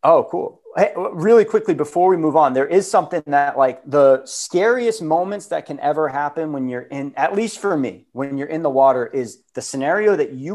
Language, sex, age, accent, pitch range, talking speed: English, male, 30-49, American, 125-160 Hz, 210 wpm